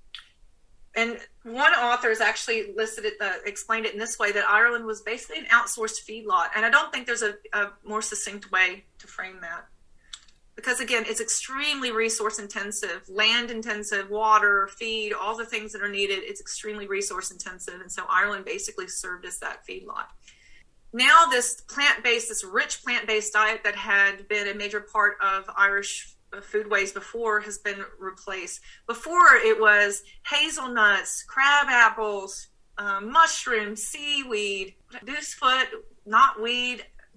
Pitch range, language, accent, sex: 200-265 Hz, English, American, female